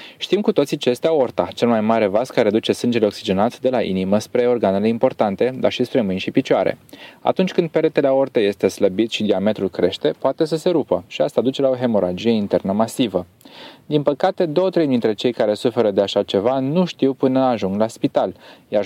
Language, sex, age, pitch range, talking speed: Romanian, male, 20-39, 105-140 Hz, 205 wpm